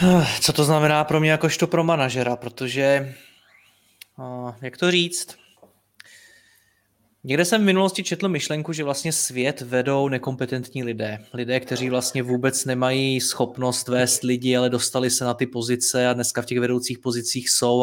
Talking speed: 150 wpm